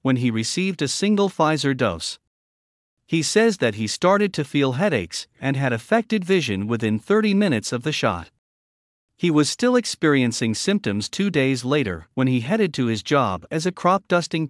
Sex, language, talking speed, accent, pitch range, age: male, English, 175 wpm, American, 115-165 Hz, 50-69